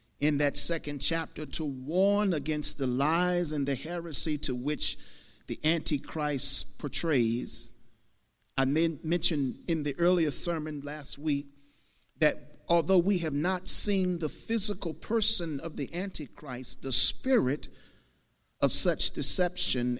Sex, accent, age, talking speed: male, American, 50-69, 125 wpm